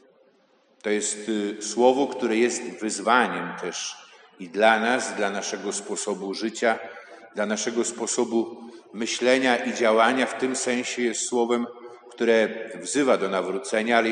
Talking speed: 130 wpm